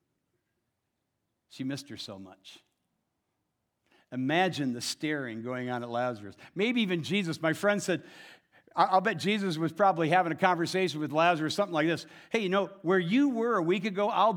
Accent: American